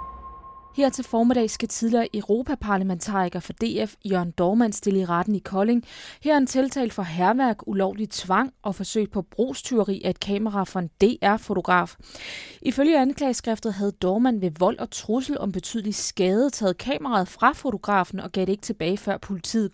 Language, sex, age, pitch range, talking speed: Danish, female, 20-39, 190-240 Hz, 160 wpm